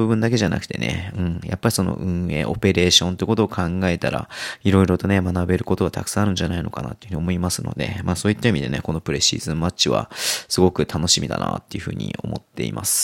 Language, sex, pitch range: Japanese, male, 85-110 Hz